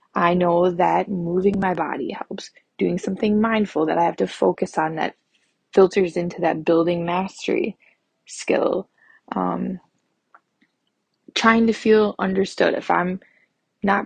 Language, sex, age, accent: English, female, 20-39, American